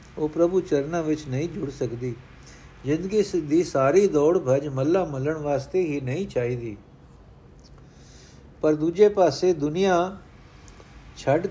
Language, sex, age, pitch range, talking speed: Punjabi, male, 60-79, 135-170 Hz, 120 wpm